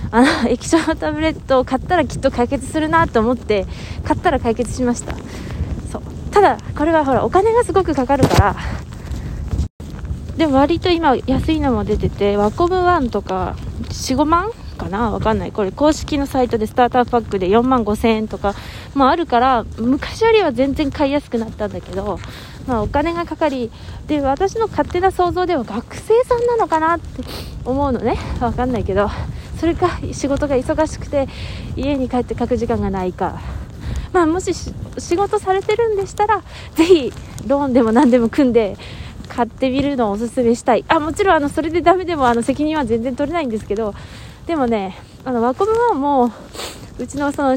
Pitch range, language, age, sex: 235-325 Hz, Japanese, 20-39, female